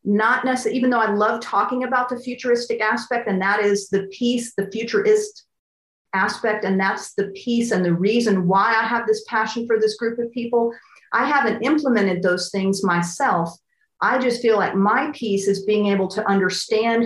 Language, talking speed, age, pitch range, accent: English, 185 wpm, 40-59, 195-245 Hz, American